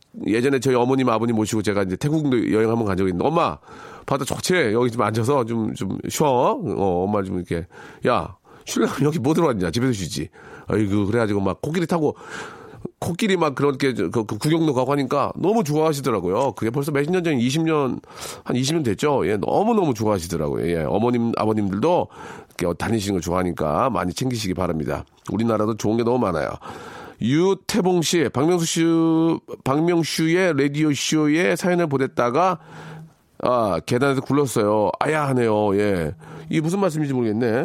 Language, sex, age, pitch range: Korean, male, 40-59, 105-155 Hz